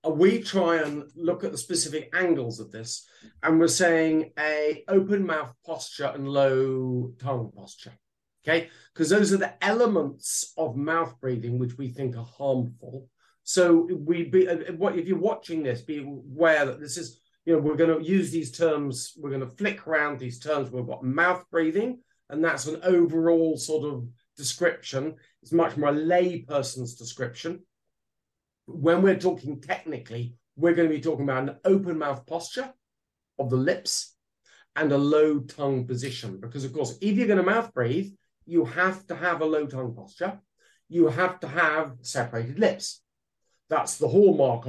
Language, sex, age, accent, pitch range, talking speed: English, male, 40-59, British, 130-175 Hz, 175 wpm